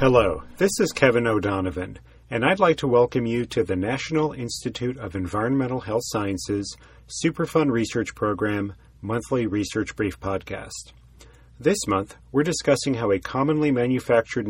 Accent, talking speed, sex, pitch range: American, 140 wpm, male, 100-135 Hz